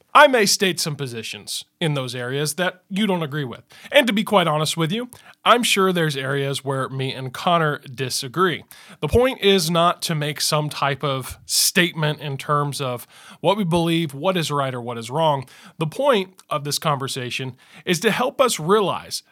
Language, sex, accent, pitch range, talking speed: English, male, American, 135-180 Hz, 195 wpm